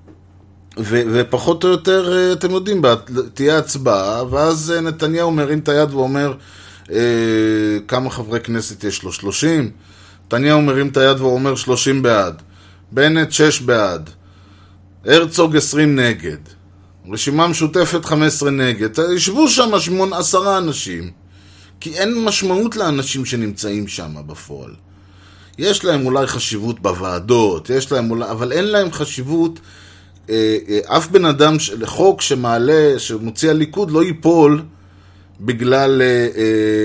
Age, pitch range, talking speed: 20-39, 95-155 Hz, 115 wpm